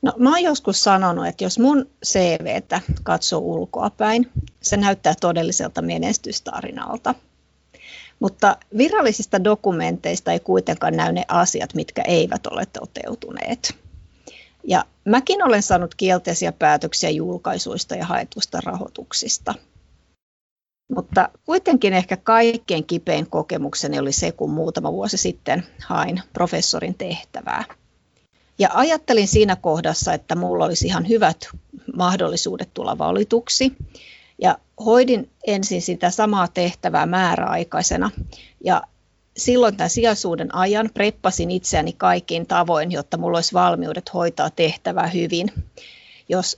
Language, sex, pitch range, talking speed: Finnish, female, 170-225 Hz, 110 wpm